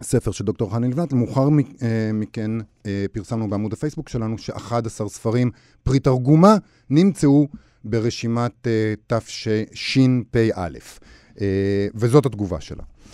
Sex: male